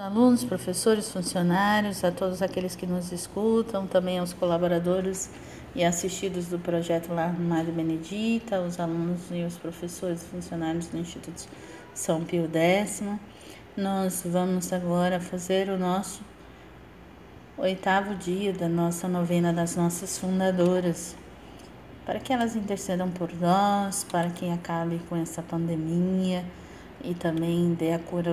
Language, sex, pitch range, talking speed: Portuguese, female, 170-185 Hz, 135 wpm